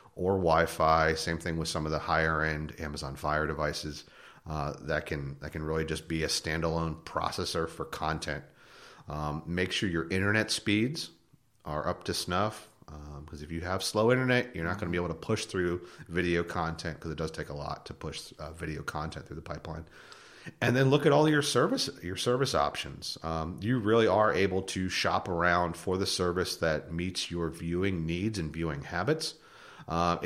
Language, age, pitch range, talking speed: English, 30-49, 80-105 Hz, 195 wpm